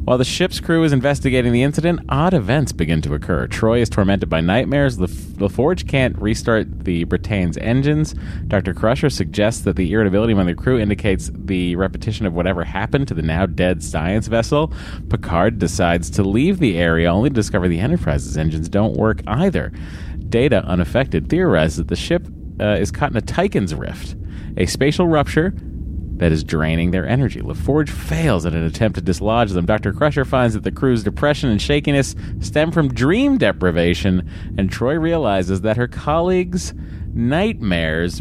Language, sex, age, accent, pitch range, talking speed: English, male, 30-49, American, 85-130 Hz, 170 wpm